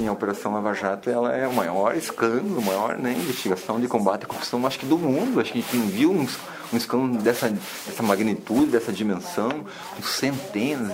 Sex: male